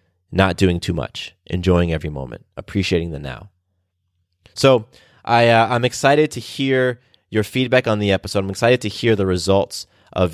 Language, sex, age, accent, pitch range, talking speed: English, male, 20-39, American, 90-115 Hz, 170 wpm